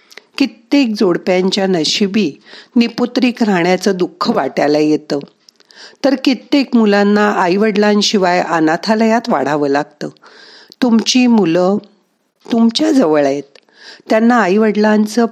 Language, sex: Marathi, female